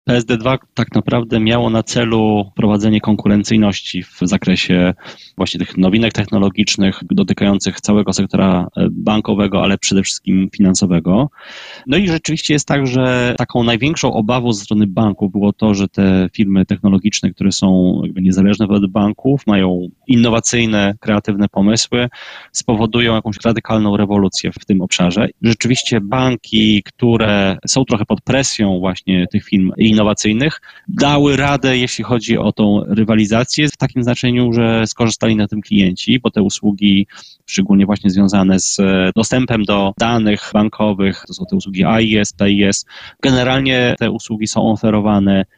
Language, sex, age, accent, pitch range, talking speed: Polish, male, 20-39, native, 100-120 Hz, 140 wpm